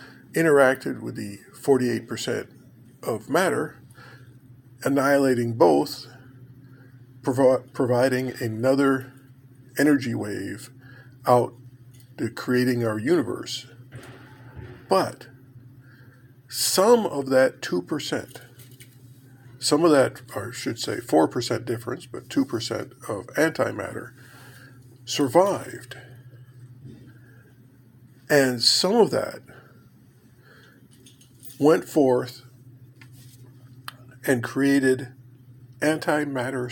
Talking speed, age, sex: 75 wpm, 50-69, male